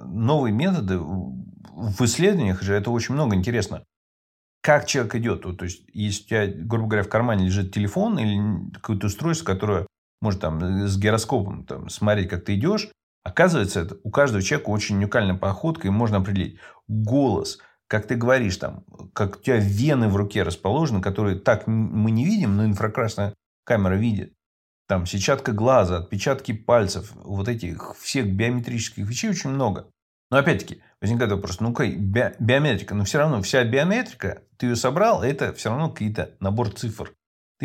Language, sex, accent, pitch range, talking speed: Russian, male, native, 95-125 Hz, 160 wpm